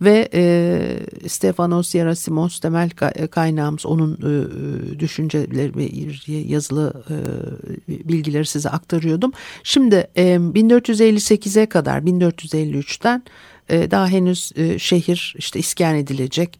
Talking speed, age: 105 wpm, 60-79